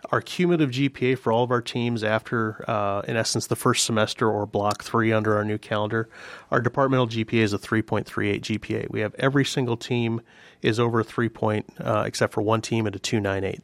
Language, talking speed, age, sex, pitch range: English, 205 wpm, 30-49, male, 105-120 Hz